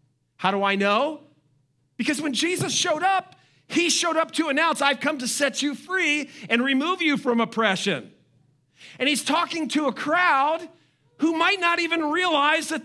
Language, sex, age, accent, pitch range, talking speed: English, male, 40-59, American, 195-285 Hz, 175 wpm